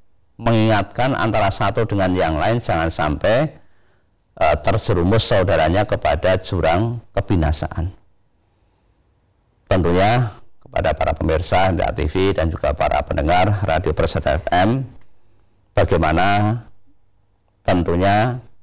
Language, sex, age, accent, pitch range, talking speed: Indonesian, male, 40-59, native, 95-110 Hz, 95 wpm